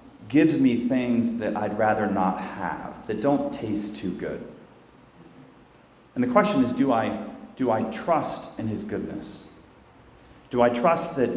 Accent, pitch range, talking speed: American, 95-135 Hz, 150 wpm